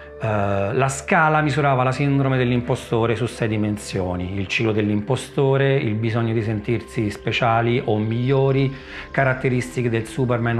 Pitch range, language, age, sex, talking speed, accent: 115-135 Hz, Italian, 40-59, male, 125 wpm, native